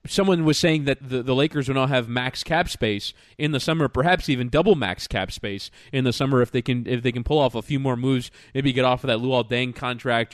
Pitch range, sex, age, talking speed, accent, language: 125-160 Hz, male, 20-39, 260 wpm, American, English